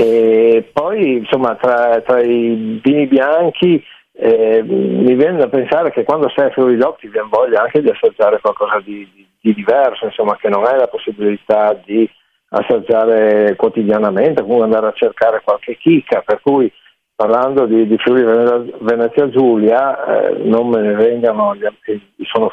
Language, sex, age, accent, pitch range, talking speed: Italian, male, 50-69, native, 110-145 Hz, 155 wpm